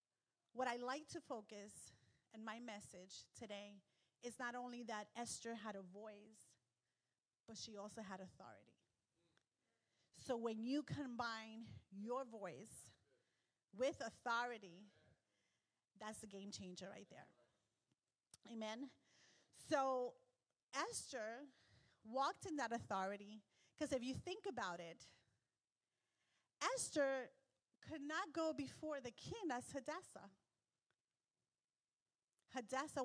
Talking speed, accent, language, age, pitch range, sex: 105 wpm, American, English, 30-49, 200-265 Hz, female